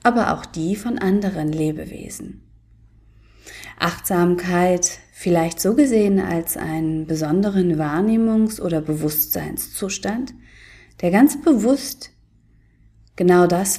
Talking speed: 90 wpm